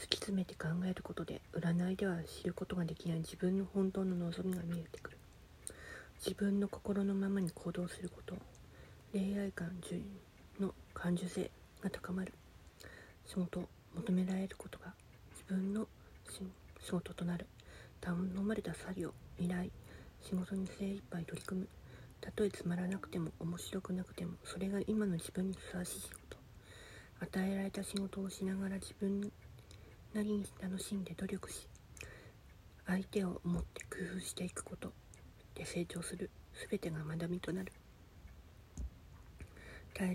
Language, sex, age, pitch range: Japanese, female, 40-59, 165-195 Hz